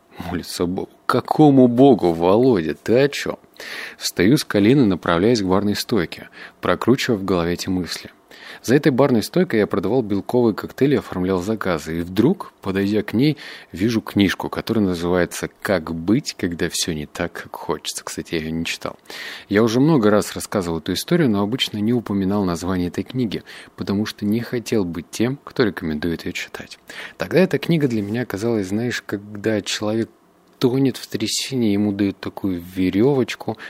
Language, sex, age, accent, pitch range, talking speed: Russian, male, 30-49, native, 90-120 Hz, 165 wpm